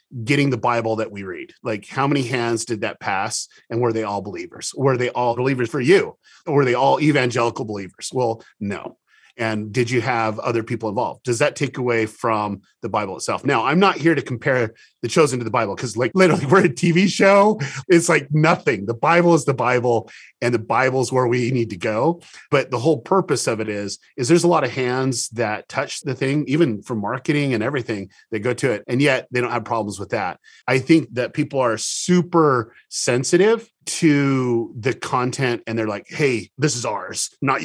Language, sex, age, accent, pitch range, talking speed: English, male, 30-49, American, 115-160 Hz, 215 wpm